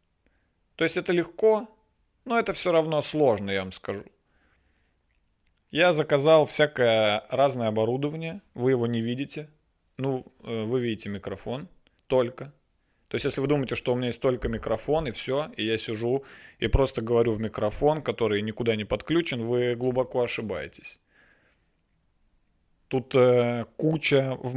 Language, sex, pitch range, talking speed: Russian, male, 110-145 Hz, 140 wpm